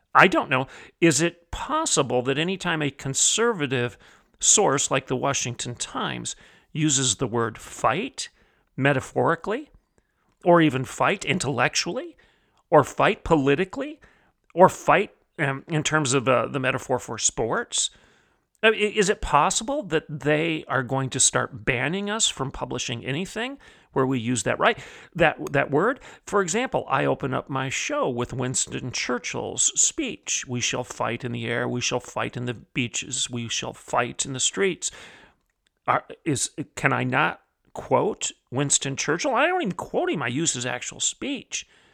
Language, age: English, 40-59